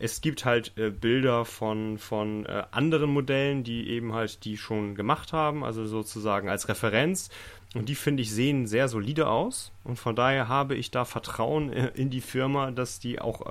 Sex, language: male, German